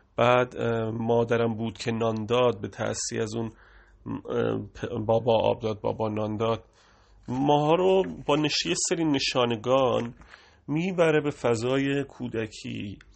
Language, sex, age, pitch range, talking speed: English, male, 30-49, 110-145 Hz, 105 wpm